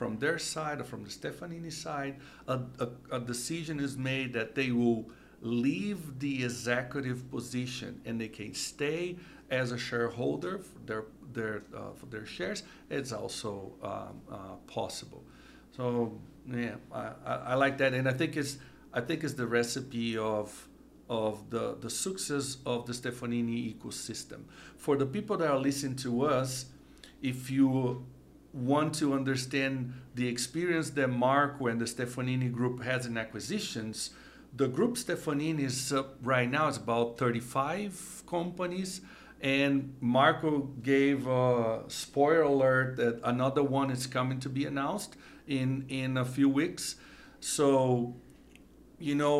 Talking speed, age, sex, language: 145 wpm, 60-79, male, English